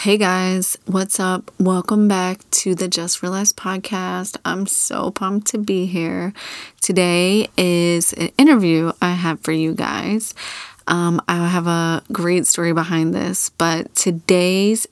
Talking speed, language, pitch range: 145 wpm, English, 170-190 Hz